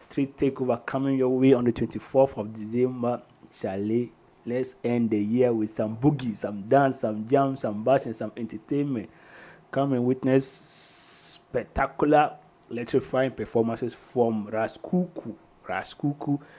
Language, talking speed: English, 125 wpm